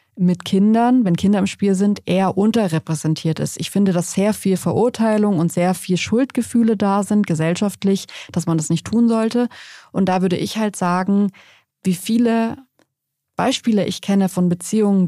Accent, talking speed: German, 165 wpm